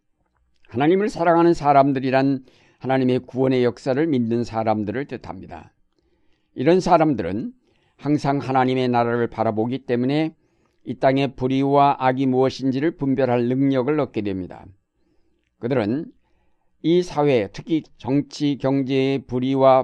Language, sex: Korean, male